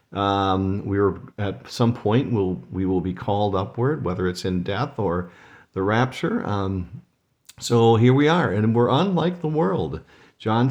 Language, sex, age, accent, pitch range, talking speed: English, male, 50-69, American, 95-130 Hz, 170 wpm